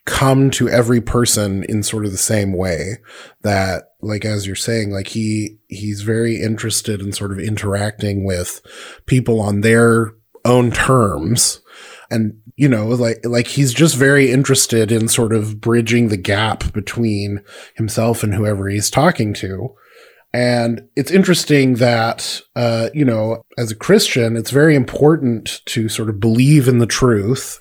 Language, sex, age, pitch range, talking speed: English, male, 20-39, 105-130 Hz, 155 wpm